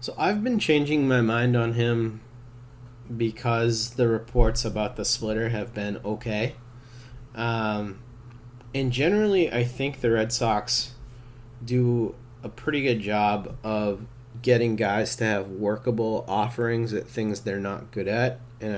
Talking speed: 140 wpm